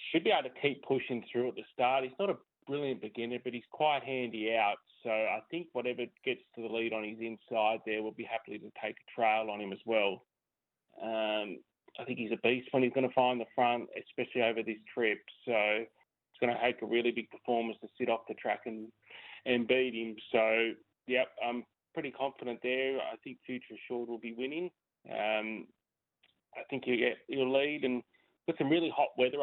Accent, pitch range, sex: Australian, 115-130 Hz, male